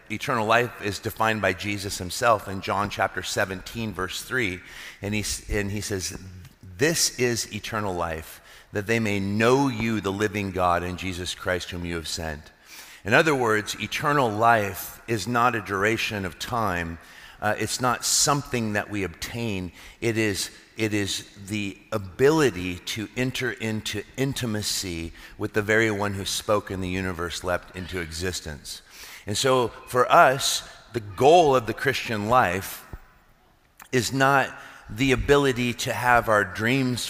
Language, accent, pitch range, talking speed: English, American, 95-115 Hz, 155 wpm